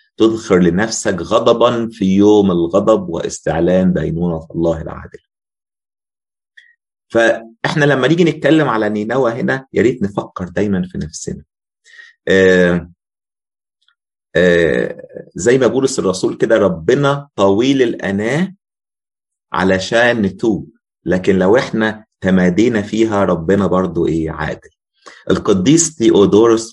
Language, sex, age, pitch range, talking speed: Arabic, male, 30-49, 95-135 Hz, 105 wpm